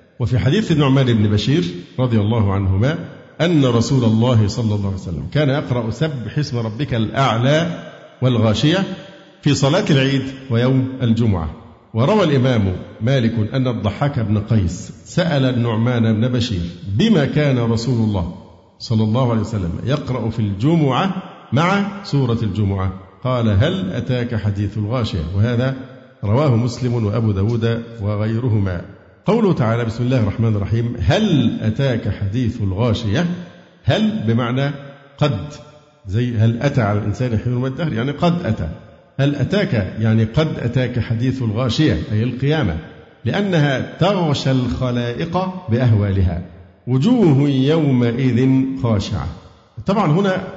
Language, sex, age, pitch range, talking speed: Arabic, male, 50-69, 110-140 Hz, 125 wpm